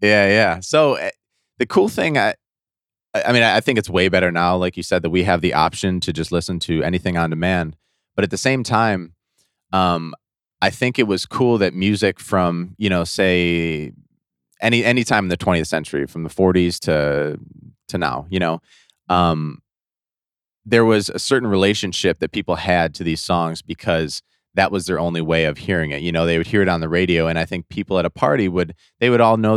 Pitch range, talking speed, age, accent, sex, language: 85-100 Hz, 210 wpm, 30-49, American, male, English